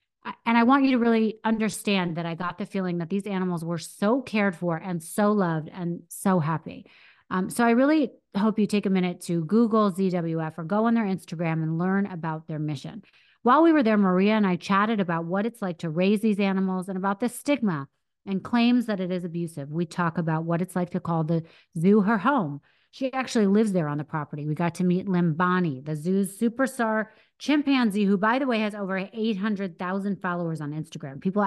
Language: English